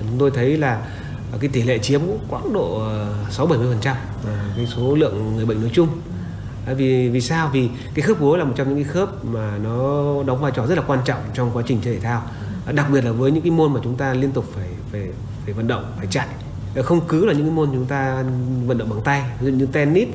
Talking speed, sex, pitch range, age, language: 240 wpm, male, 115-145 Hz, 30-49, Vietnamese